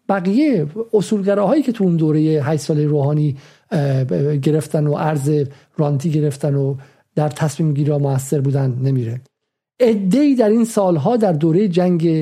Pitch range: 150-195 Hz